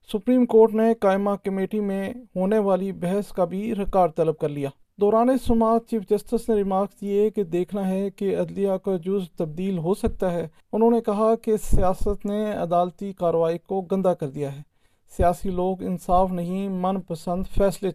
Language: Urdu